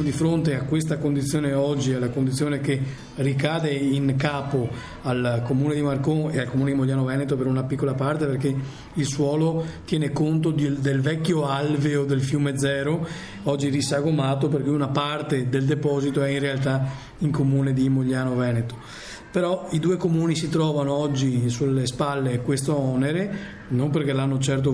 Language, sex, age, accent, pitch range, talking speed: Italian, male, 40-59, native, 130-145 Hz, 165 wpm